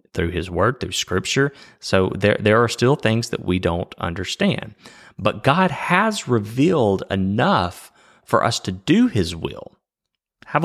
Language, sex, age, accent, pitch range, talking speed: English, male, 30-49, American, 95-120 Hz, 150 wpm